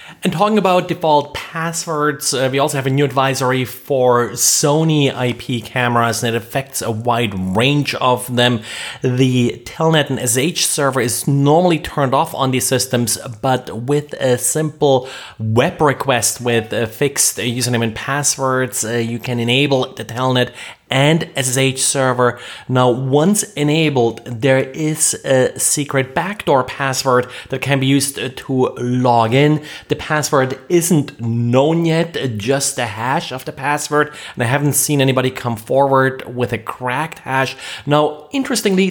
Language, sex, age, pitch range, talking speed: English, male, 30-49, 125-145 Hz, 150 wpm